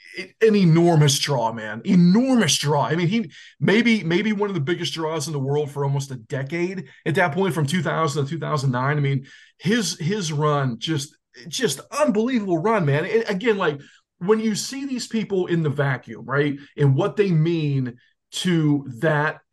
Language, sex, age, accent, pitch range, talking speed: English, male, 20-39, American, 150-225 Hz, 185 wpm